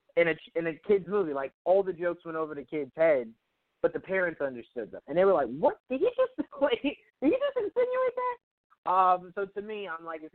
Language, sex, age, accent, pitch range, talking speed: English, male, 30-49, American, 140-185 Hz, 240 wpm